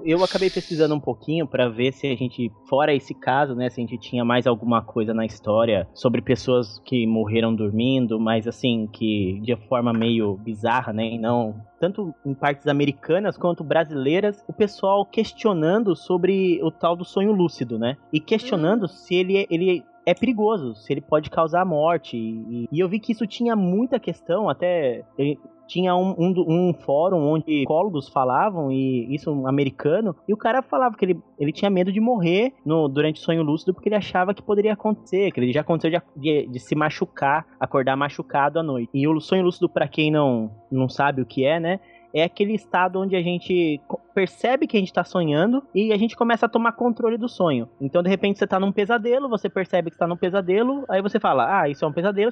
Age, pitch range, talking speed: 20-39, 135-195 Hz, 200 wpm